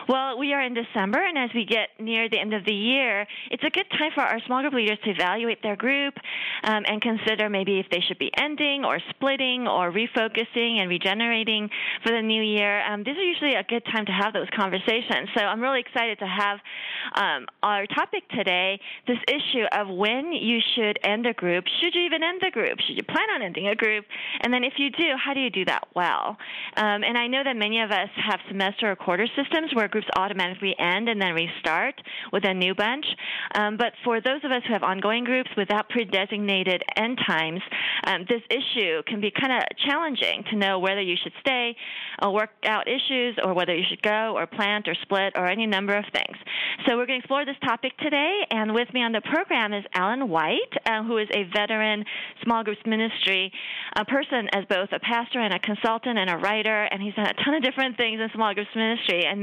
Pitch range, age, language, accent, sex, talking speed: 205-255 Hz, 30-49, English, American, female, 225 wpm